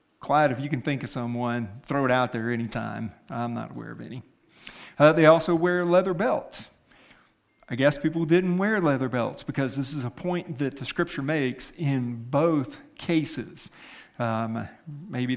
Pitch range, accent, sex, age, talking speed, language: 130-180 Hz, American, male, 50-69, 170 wpm, English